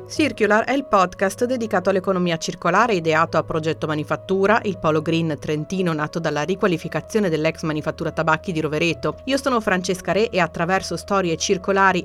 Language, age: Italian, 40-59